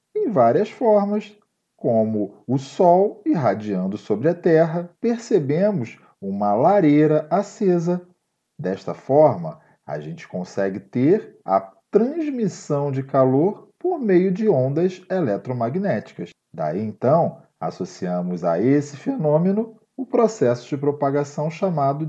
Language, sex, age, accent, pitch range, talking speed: Portuguese, male, 40-59, Brazilian, 125-205 Hz, 110 wpm